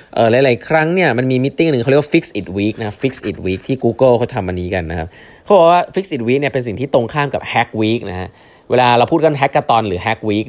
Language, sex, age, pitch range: Thai, male, 20-39, 95-140 Hz